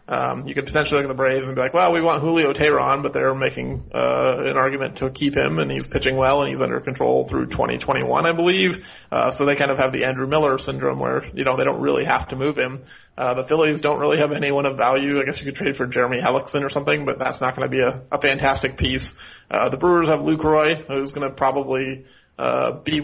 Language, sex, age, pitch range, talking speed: English, male, 30-49, 130-145 Hz, 255 wpm